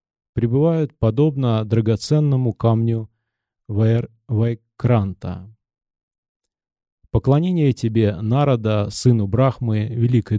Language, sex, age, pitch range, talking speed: Russian, male, 30-49, 105-135 Hz, 65 wpm